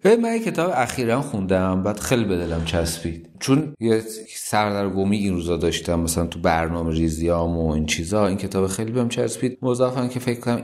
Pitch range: 85-115 Hz